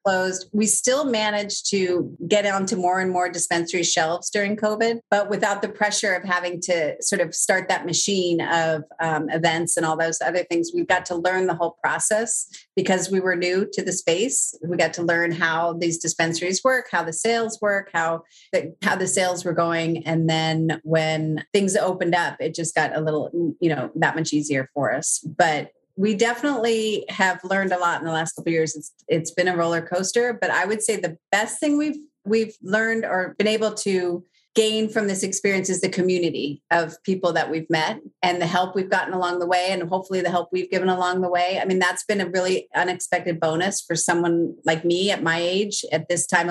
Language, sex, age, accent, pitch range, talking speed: English, female, 30-49, American, 165-200 Hz, 215 wpm